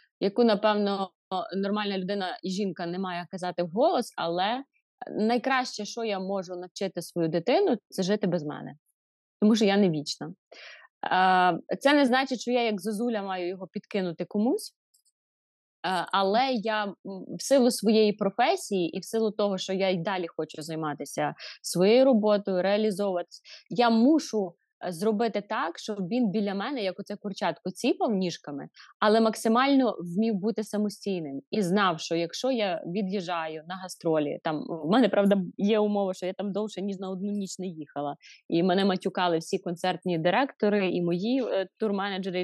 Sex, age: female, 20-39